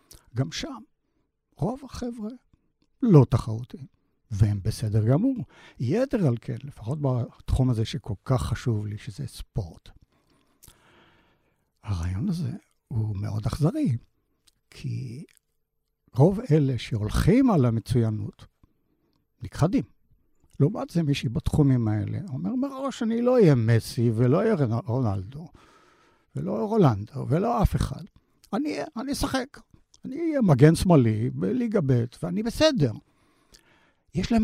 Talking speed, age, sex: 110 wpm, 60-79, male